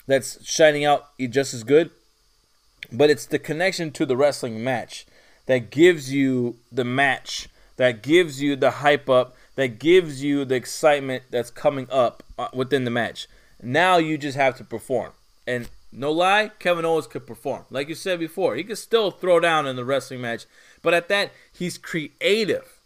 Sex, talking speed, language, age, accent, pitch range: male, 175 wpm, English, 20-39, American, 130-185 Hz